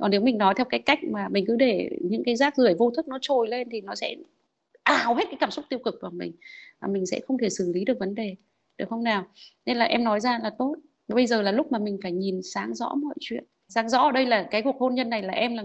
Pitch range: 225-285 Hz